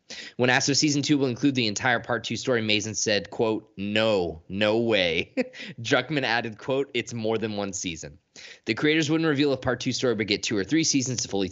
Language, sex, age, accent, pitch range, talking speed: English, male, 20-39, American, 100-130 Hz, 220 wpm